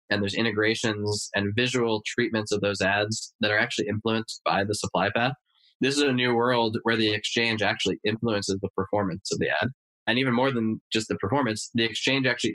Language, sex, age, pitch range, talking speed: English, male, 10-29, 105-120 Hz, 200 wpm